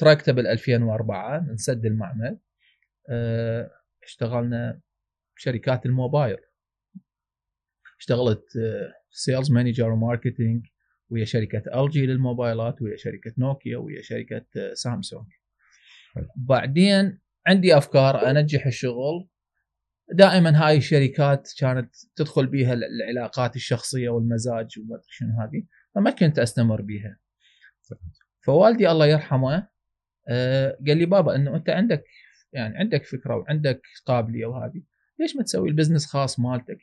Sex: male